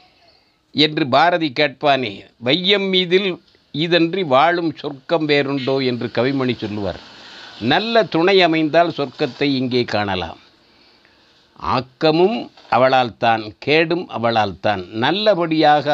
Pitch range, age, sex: 125-170 Hz, 50-69, male